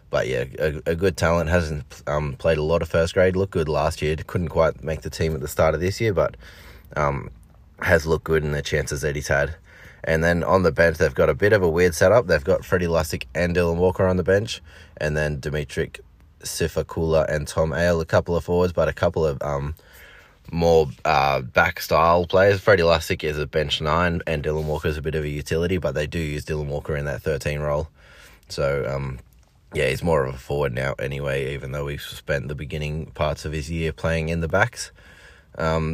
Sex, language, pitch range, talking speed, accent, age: male, English, 75-85 Hz, 225 wpm, Australian, 20-39